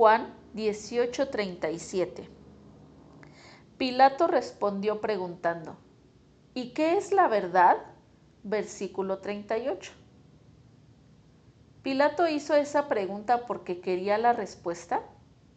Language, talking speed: Spanish, 80 wpm